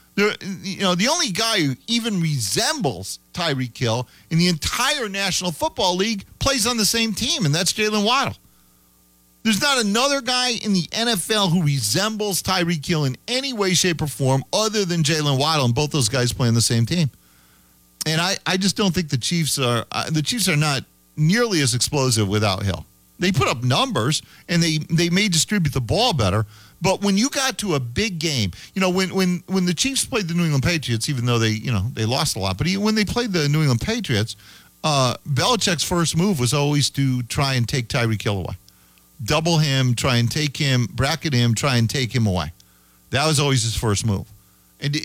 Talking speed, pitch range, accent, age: 210 wpm, 115-185 Hz, American, 40-59